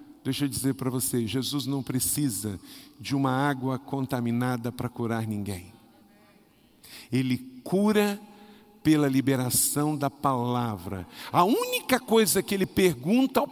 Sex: male